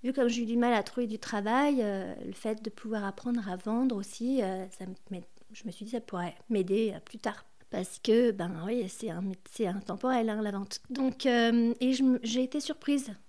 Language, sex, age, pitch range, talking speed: French, female, 40-59, 205-245 Hz, 215 wpm